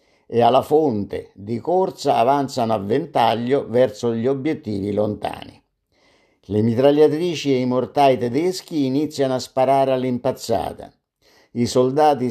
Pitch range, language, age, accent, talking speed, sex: 115-145 Hz, Italian, 50-69, native, 115 wpm, male